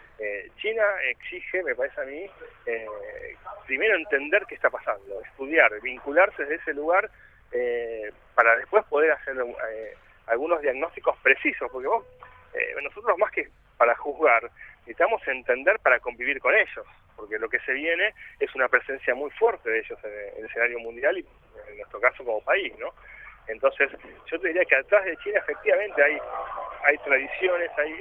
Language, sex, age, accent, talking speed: Spanish, male, 40-59, Argentinian, 165 wpm